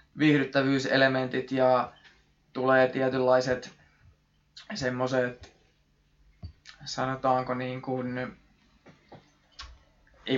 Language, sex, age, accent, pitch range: Finnish, male, 20-39, native, 115-140 Hz